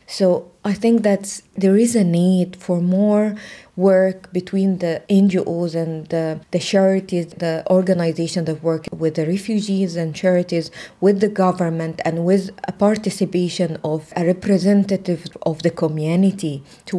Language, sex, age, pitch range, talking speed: English, female, 20-39, 175-205 Hz, 145 wpm